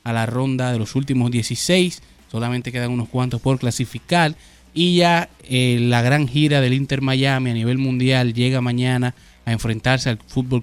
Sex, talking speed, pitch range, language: male, 175 wpm, 120-135 Hz, Spanish